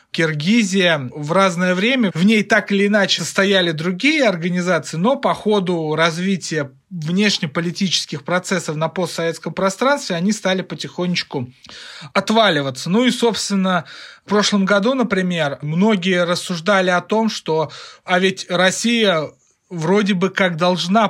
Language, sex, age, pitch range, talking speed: Russian, male, 30-49, 160-200 Hz, 125 wpm